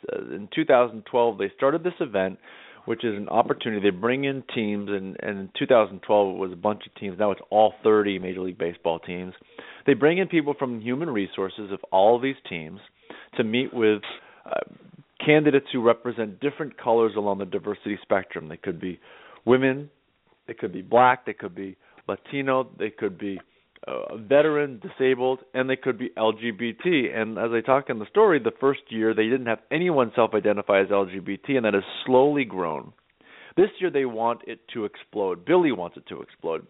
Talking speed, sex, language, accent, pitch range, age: 185 wpm, male, English, American, 105-135 Hz, 30-49